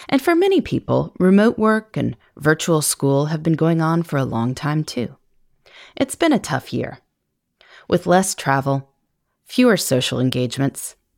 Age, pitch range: 30-49, 140-220 Hz